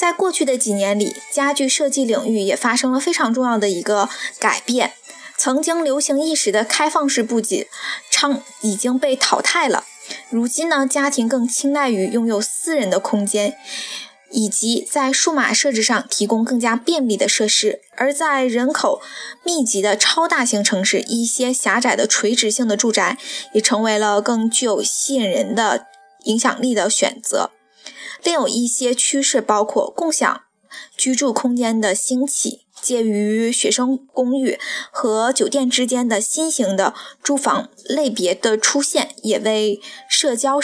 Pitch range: 215-280 Hz